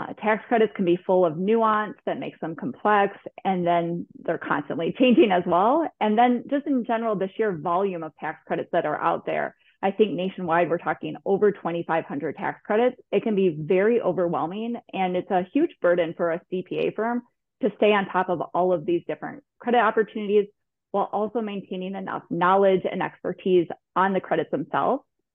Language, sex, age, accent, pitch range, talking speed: English, female, 20-39, American, 180-225 Hz, 185 wpm